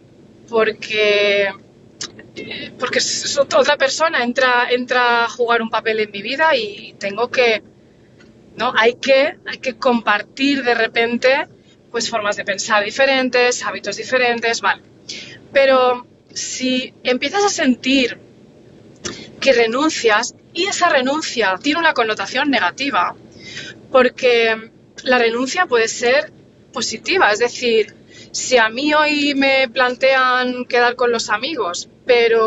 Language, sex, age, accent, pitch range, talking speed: Spanish, female, 30-49, Spanish, 225-275 Hz, 115 wpm